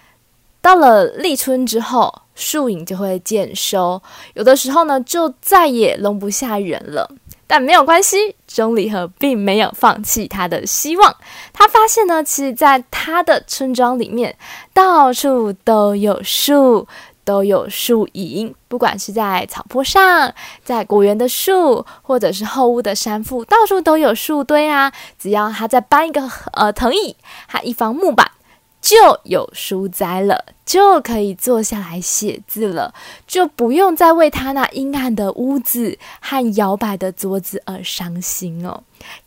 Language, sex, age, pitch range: Chinese, female, 10-29, 200-295 Hz